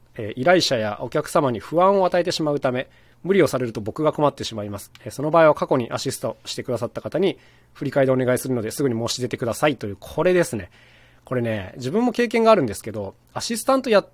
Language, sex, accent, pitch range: Japanese, male, native, 115-180 Hz